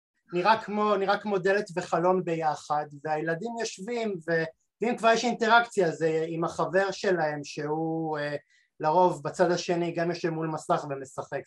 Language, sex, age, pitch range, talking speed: Hebrew, male, 30-49, 150-195 Hz, 135 wpm